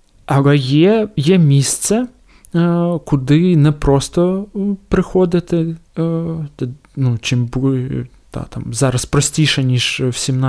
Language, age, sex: Ukrainian, 20-39, male